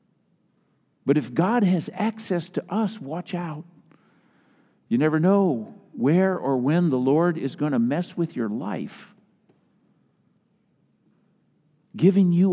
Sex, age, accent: male, 60-79, American